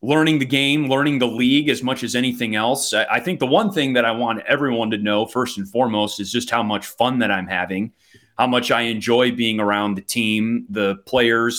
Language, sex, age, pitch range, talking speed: English, male, 30-49, 115-135 Hz, 230 wpm